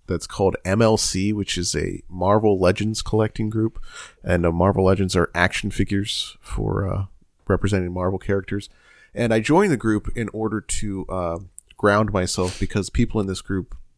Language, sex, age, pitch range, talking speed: English, male, 30-49, 90-110 Hz, 160 wpm